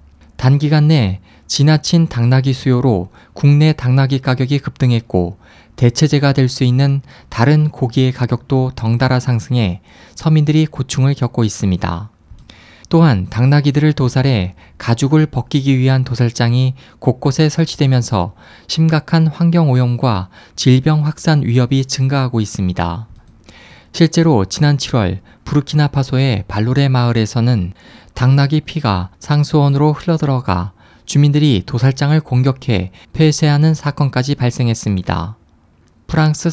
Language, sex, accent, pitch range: Korean, male, native, 110-145 Hz